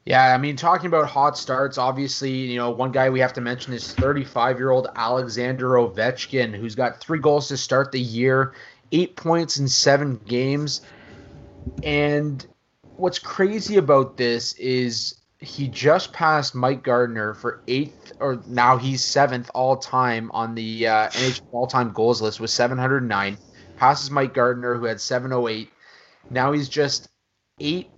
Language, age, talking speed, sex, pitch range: English, 20-39, 150 wpm, male, 115-140 Hz